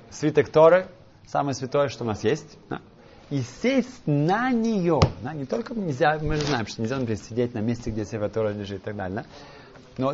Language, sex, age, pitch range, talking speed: Russian, male, 30-49, 120-155 Hz, 200 wpm